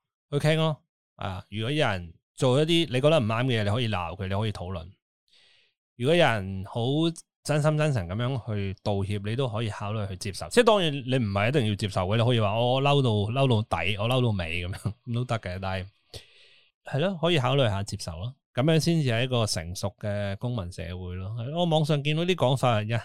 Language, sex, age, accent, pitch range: Chinese, male, 20-39, native, 100-150 Hz